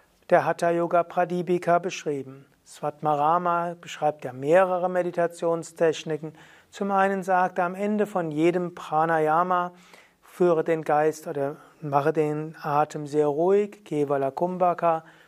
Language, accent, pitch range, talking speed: German, German, 150-180 Hz, 105 wpm